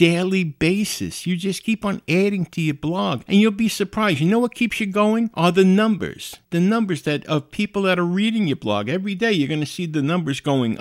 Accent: American